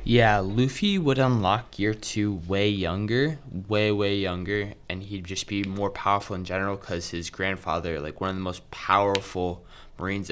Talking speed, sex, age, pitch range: 170 wpm, male, 20-39, 95-115 Hz